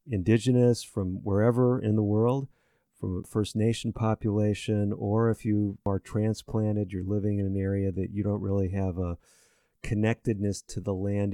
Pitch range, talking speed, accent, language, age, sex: 100-115 Hz, 165 wpm, American, English, 40-59, male